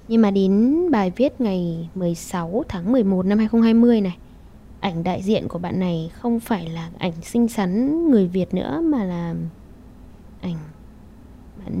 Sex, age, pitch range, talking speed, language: female, 10-29, 190-255 Hz, 160 wpm, Vietnamese